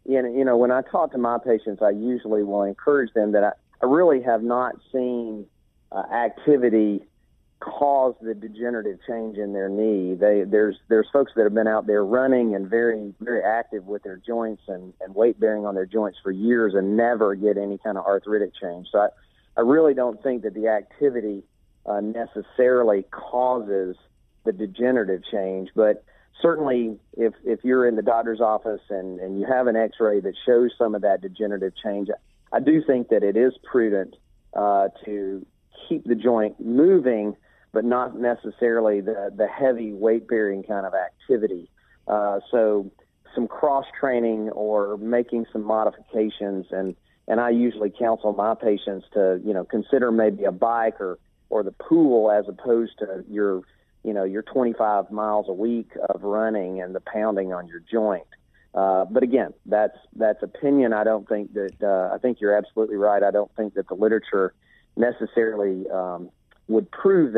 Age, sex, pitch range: 40-59, male, 100-120 Hz